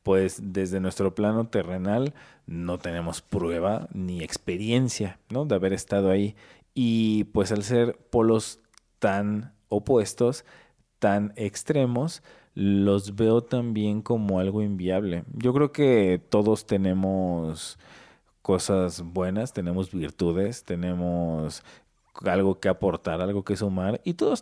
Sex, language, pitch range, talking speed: male, Spanish, 85-105 Hz, 115 wpm